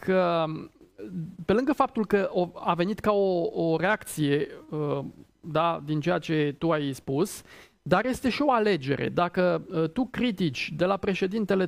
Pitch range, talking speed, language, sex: 150-210 Hz, 140 wpm, Romanian, male